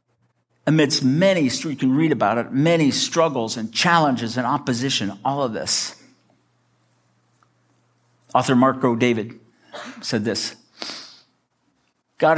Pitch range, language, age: 105-135 Hz, English, 60-79